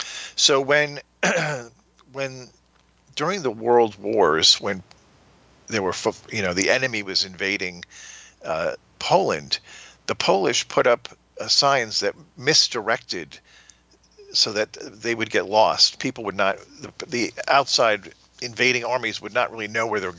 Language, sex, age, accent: English, male, 50-69, American